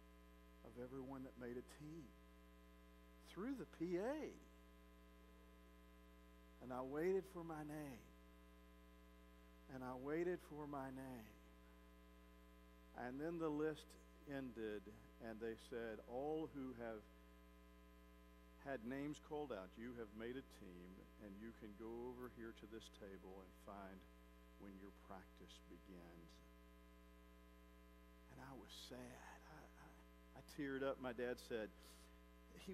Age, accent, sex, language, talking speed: 50-69, American, male, English, 120 wpm